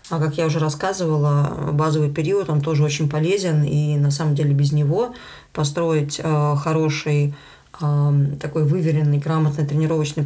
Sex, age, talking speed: female, 20-39, 145 wpm